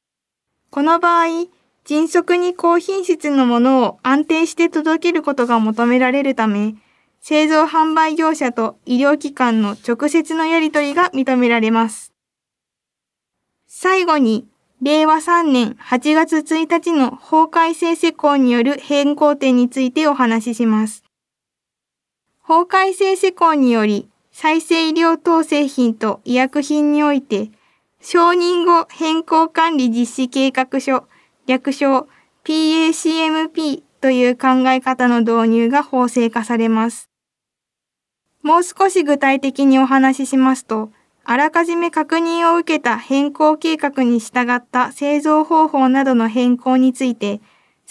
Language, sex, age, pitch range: Japanese, female, 20-39, 250-320 Hz